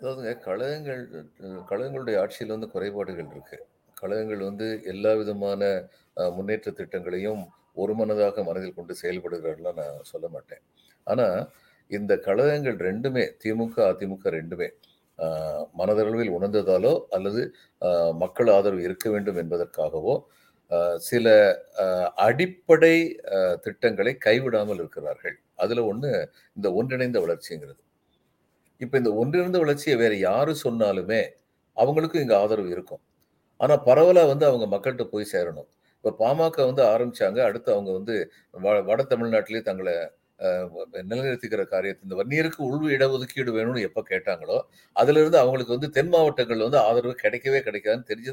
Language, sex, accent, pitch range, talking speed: Tamil, male, native, 110-180 Hz, 115 wpm